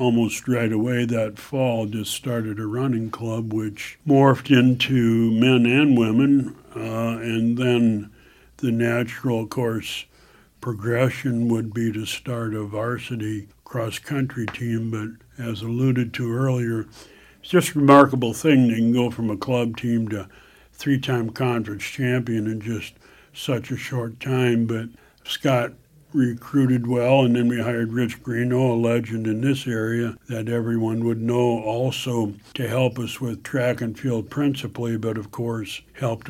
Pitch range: 115-125 Hz